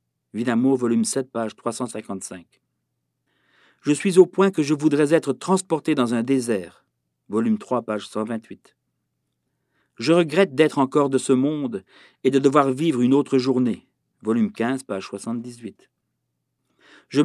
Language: French